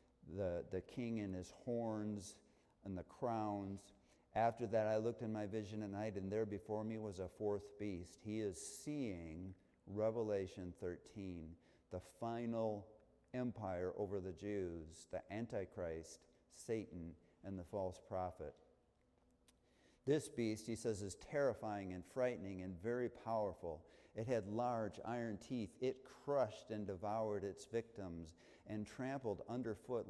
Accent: American